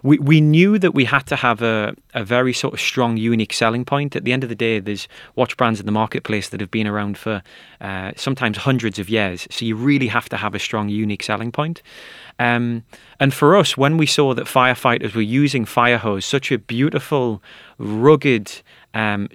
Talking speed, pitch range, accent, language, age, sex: 210 wpm, 110-135 Hz, British, English, 30-49, male